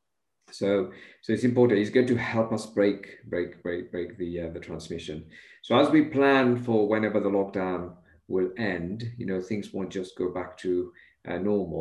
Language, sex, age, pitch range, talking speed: English, male, 50-69, 85-100 Hz, 190 wpm